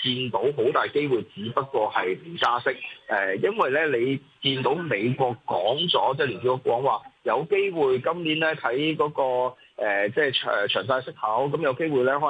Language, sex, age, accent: Chinese, male, 20-39, native